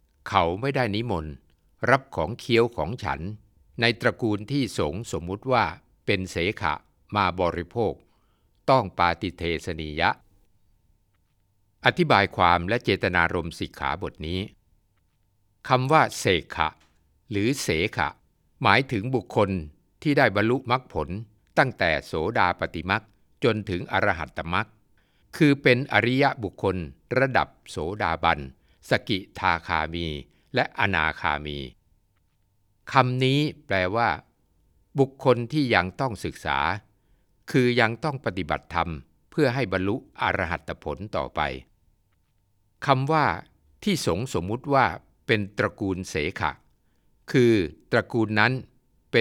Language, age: Thai, 60-79